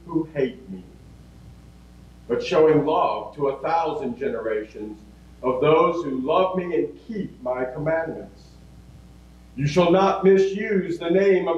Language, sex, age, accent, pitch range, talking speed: English, male, 50-69, American, 140-185 Hz, 140 wpm